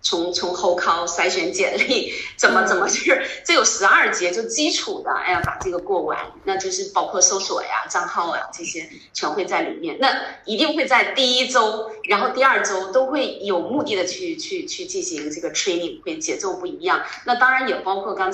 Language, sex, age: Chinese, female, 20-39